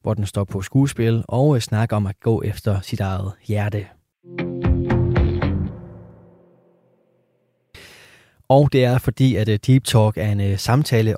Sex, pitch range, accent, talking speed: male, 105-130 Hz, native, 130 wpm